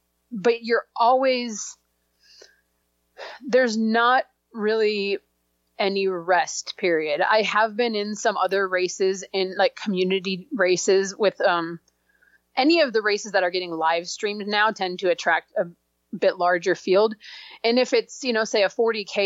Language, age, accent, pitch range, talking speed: English, 30-49, American, 180-215 Hz, 145 wpm